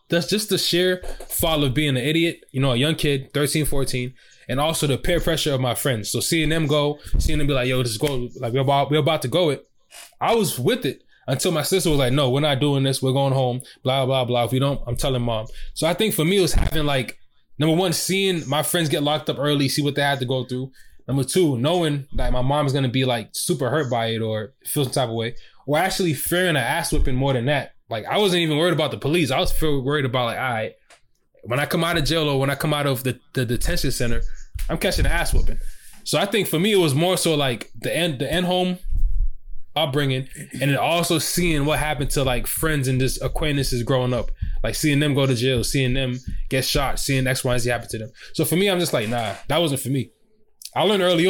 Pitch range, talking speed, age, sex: 130-160 Hz, 260 wpm, 20-39, male